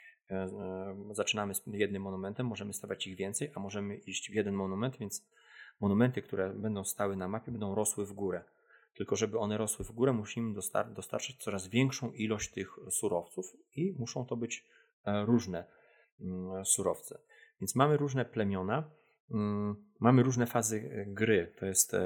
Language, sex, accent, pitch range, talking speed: Polish, male, native, 95-110 Hz, 150 wpm